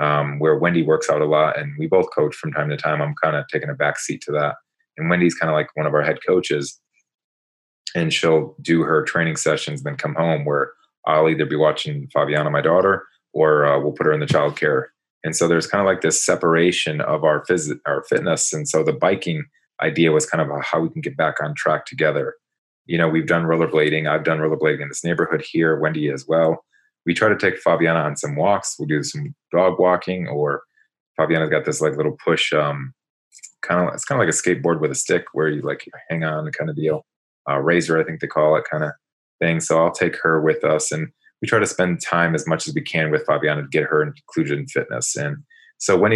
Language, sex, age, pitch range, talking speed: English, male, 30-49, 75-85 Hz, 235 wpm